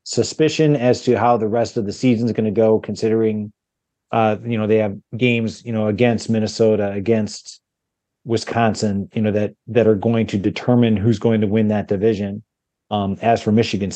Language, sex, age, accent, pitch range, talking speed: English, male, 30-49, American, 110-130 Hz, 190 wpm